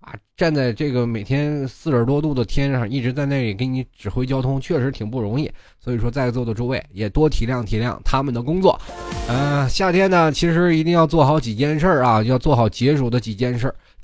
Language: Chinese